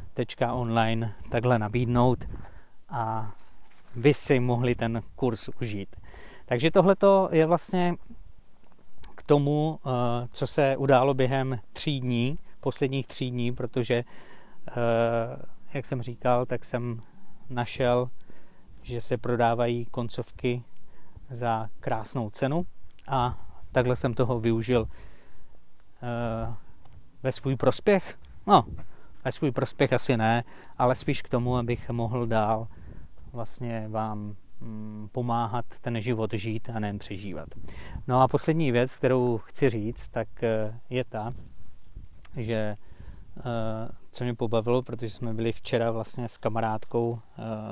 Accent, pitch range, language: native, 110-125 Hz, Czech